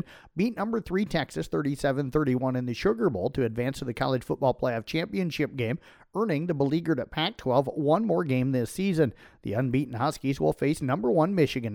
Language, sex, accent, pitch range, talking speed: English, male, American, 130-165 Hz, 190 wpm